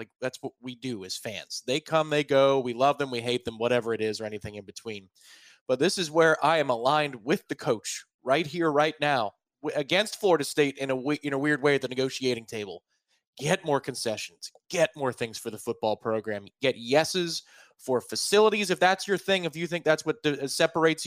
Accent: American